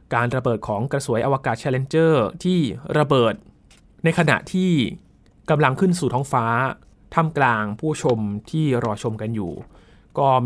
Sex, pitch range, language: male, 115-145 Hz, Thai